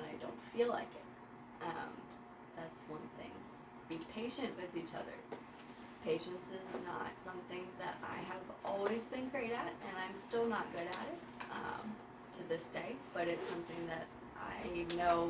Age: 20-39